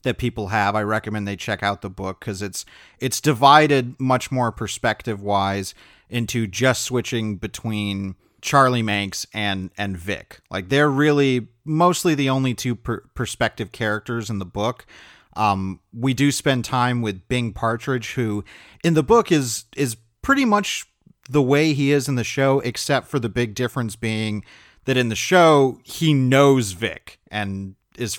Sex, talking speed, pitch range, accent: male, 165 wpm, 105-135 Hz, American